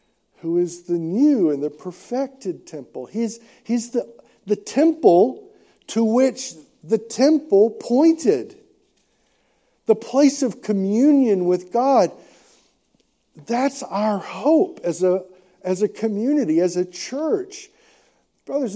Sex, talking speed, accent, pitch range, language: male, 110 wpm, American, 170-250 Hz, English